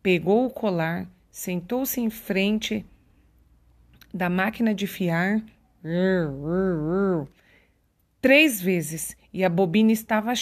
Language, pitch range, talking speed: Portuguese, 170-220 Hz, 90 wpm